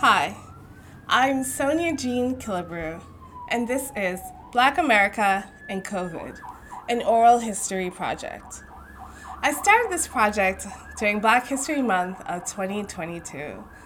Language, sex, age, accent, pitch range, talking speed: English, female, 20-39, American, 195-270 Hz, 115 wpm